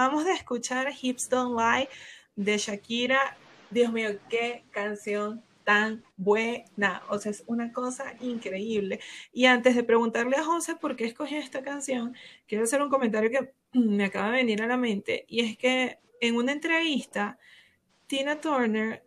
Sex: female